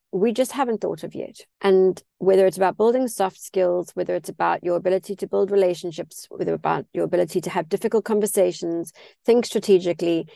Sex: female